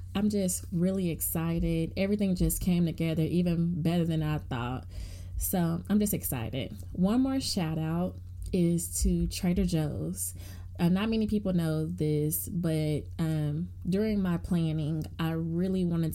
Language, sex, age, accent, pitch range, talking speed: English, female, 20-39, American, 150-185 Hz, 145 wpm